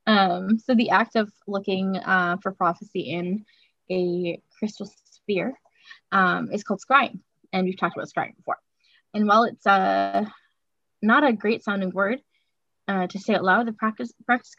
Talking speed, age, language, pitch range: 165 wpm, 10-29, English, 190-245 Hz